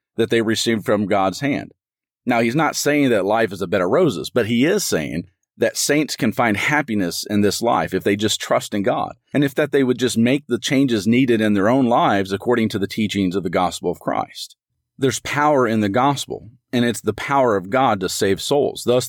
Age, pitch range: 40-59, 100-130 Hz